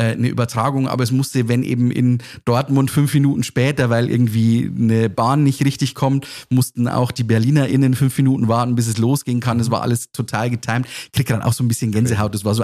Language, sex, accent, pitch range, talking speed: German, male, German, 115-130 Hz, 220 wpm